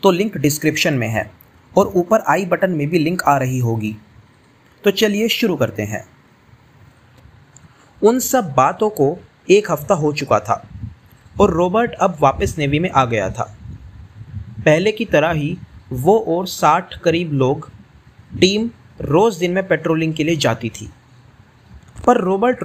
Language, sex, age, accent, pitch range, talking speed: Hindi, male, 30-49, native, 130-215 Hz, 155 wpm